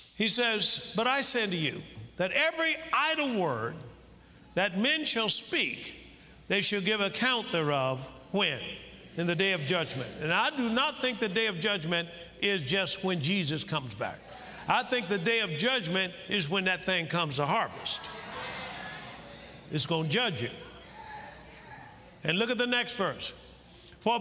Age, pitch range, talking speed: 50-69, 170-225 Hz, 165 wpm